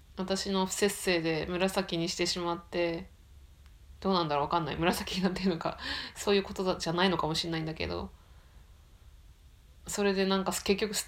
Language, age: Japanese, 20-39